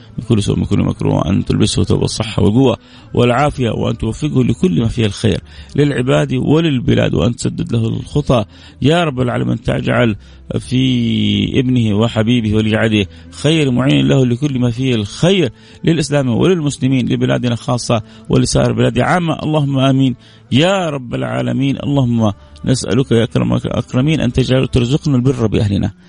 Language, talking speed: Arabic, 130 wpm